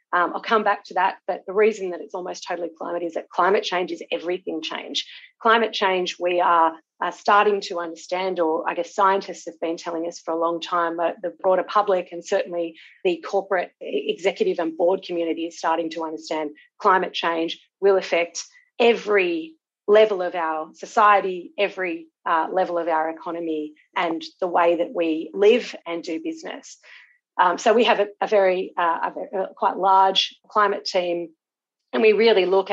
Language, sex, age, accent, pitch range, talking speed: English, female, 30-49, Australian, 170-200 Hz, 180 wpm